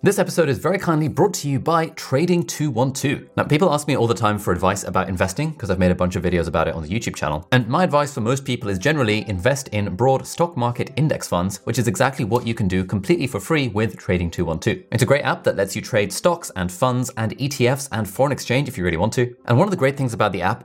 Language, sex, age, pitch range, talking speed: English, male, 20-39, 90-125 Hz, 265 wpm